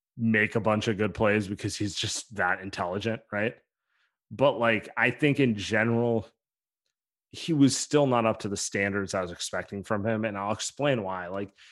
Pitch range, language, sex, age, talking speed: 100-120 Hz, English, male, 30-49, 185 wpm